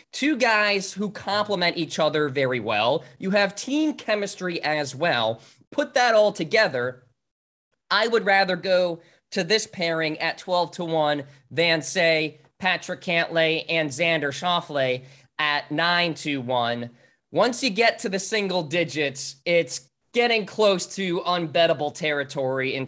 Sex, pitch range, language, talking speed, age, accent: male, 155-195 Hz, English, 140 wpm, 20-39, American